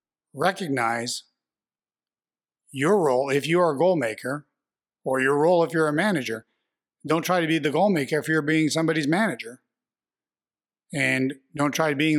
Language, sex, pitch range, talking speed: English, male, 130-155 Hz, 160 wpm